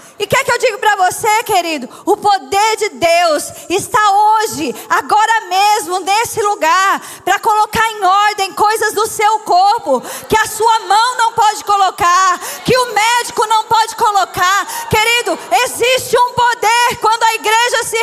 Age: 20-39